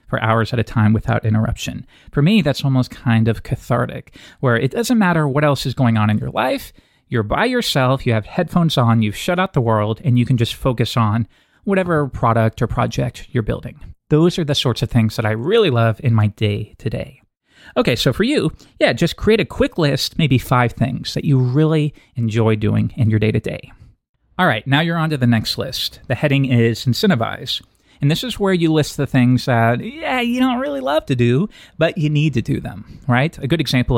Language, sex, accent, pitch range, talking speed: English, male, American, 115-150 Hz, 225 wpm